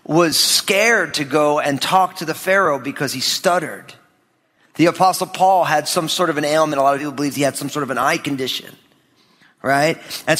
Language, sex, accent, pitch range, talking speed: English, male, American, 145-190 Hz, 210 wpm